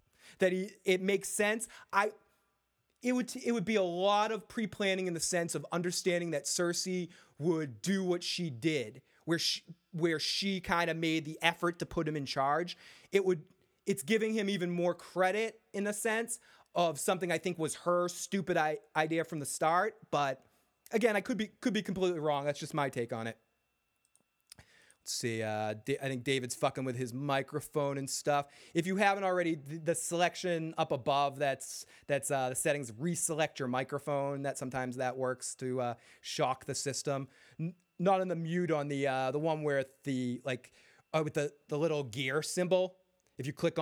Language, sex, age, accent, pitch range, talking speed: English, male, 30-49, American, 135-185 Hz, 190 wpm